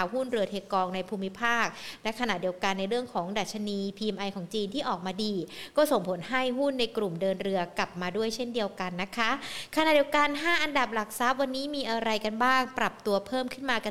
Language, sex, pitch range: Thai, female, 200-250 Hz